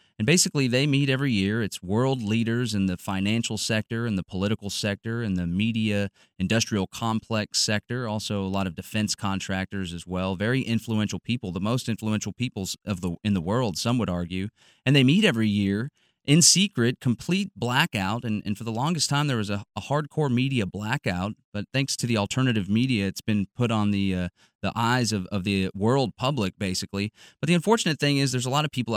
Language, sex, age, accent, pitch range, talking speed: English, male, 30-49, American, 95-120 Hz, 200 wpm